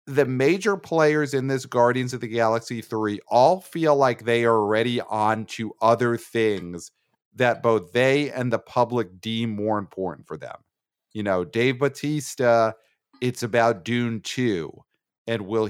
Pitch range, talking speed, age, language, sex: 110-135 Hz, 155 wpm, 40-59, English, male